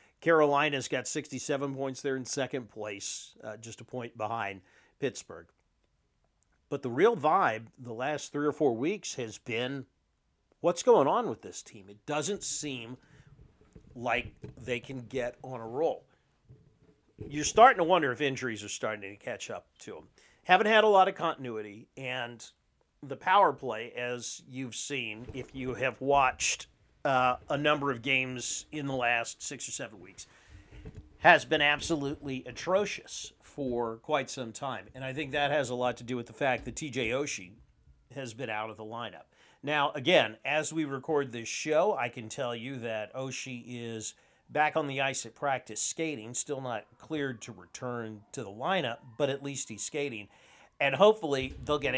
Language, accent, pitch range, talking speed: English, American, 115-145 Hz, 175 wpm